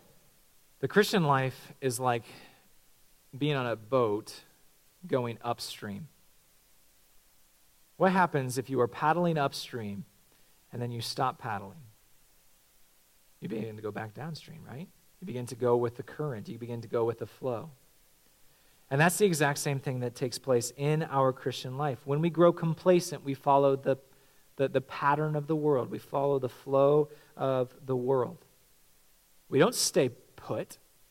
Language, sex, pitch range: English, male, 110-140 Hz